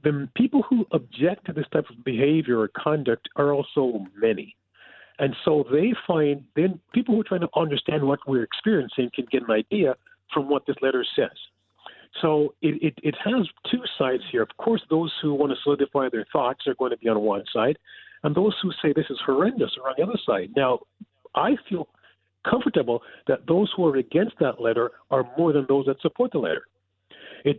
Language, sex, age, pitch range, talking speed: English, male, 40-59, 130-165 Hz, 200 wpm